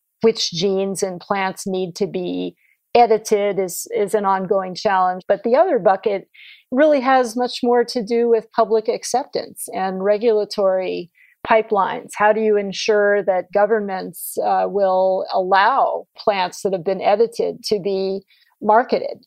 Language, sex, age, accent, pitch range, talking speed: English, female, 40-59, American, 195-220 Hz, 145 wpm